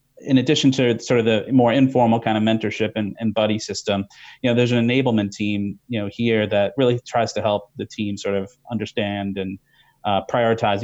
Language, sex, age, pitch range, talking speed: English, male, 30-49, 100-120 Hz, 205 wpm